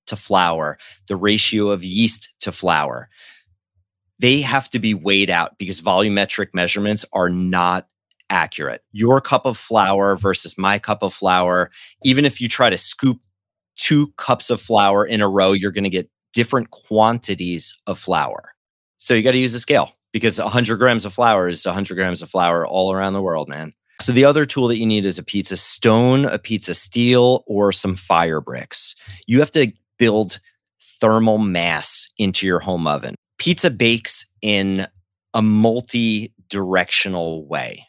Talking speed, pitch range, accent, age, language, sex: 170 wpm, 95-115 Hz, American, 30-49, English, male